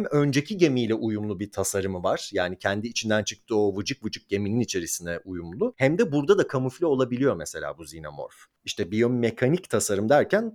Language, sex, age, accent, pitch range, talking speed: Turkish, male, 40-59, native, 105-140 Hz, 175 wpm